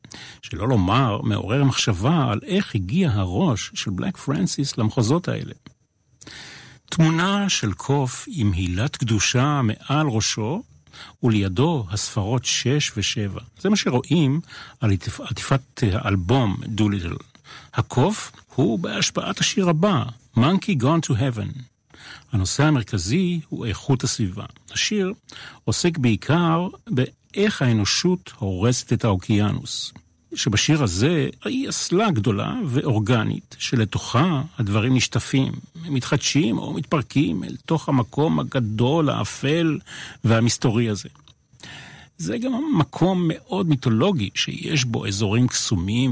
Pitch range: 110-150 Hz